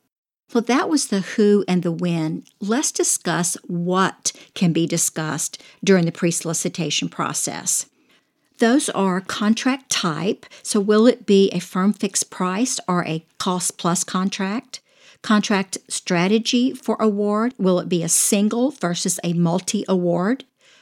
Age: 50-69